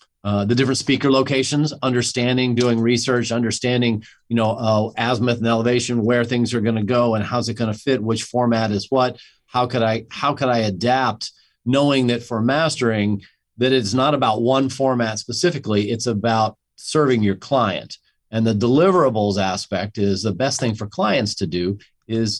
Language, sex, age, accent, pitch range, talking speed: English, male, 40-59, American, 105-125 Hz, 180 wpm